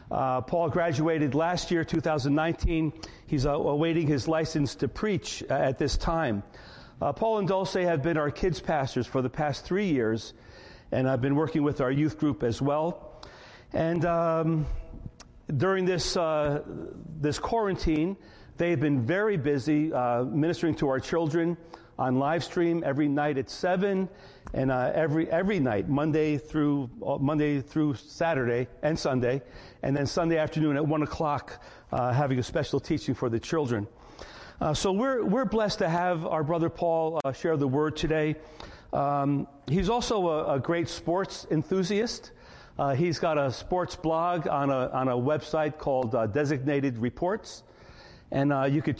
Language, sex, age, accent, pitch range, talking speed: English, male, 50-69, American, 140-170 Hz, 165 wpm